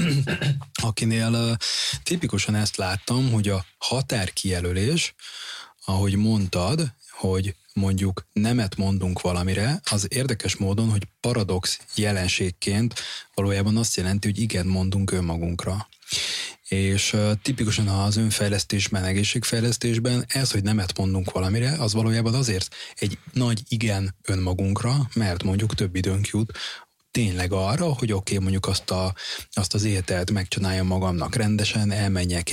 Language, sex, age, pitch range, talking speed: Hungarian, male, 20-39, 95-115 Hz, 120 wpm